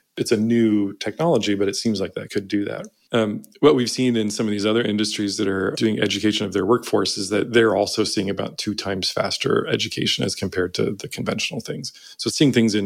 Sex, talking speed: male, 230 wpm